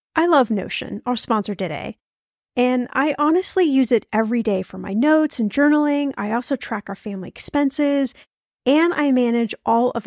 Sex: female